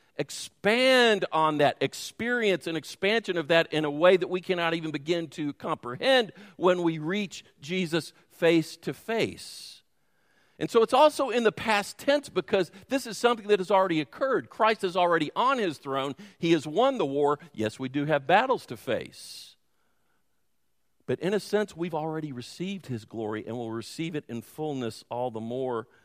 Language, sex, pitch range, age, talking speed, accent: English, male, 125-185 Hz, 50-69, 175 wpm, American